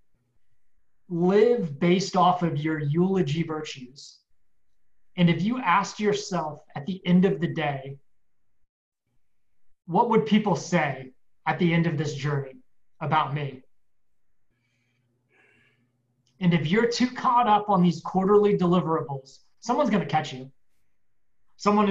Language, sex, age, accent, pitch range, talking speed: English, male, 30-49, American, 145-195 Hz, 125 wpm